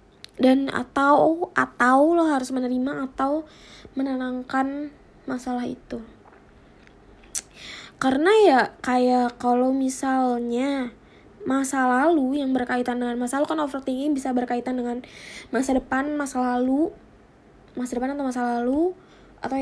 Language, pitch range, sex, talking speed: Indonesian, 250-280 Hz, female, 115 wpm